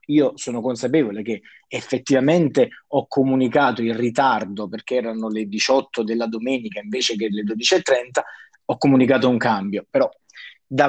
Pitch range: 130-175 Hz